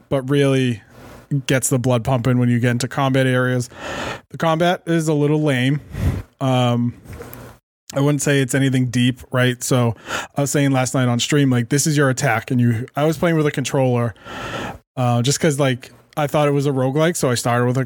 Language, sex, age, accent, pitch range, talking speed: English, male, 20-39, American, 120-145 Hz, 210 wpm